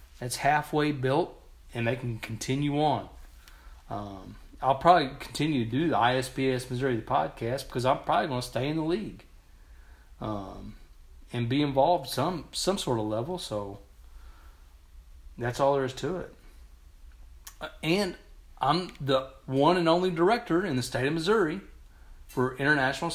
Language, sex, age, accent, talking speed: English, male, 40-59, American, 150 wpm